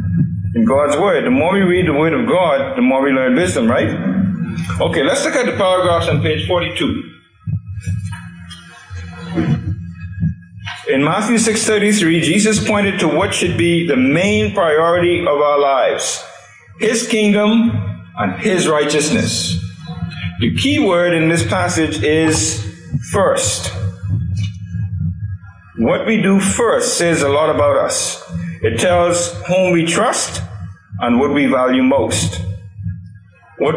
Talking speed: 130 wpm